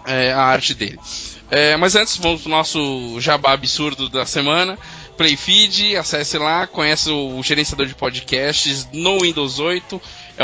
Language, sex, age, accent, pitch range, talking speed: Portuguese, male, 20-39, Brazilian, 130-165 Hz, 160 wpm